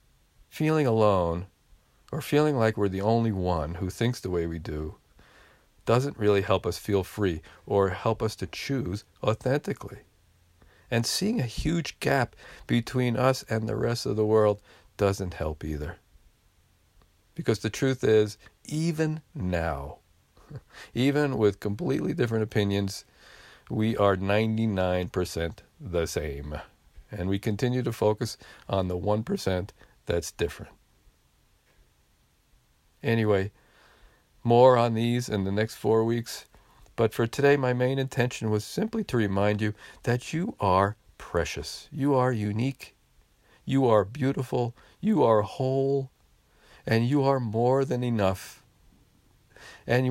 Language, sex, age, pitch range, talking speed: English, male, 50-69, 95-125 Hz, 130 wpm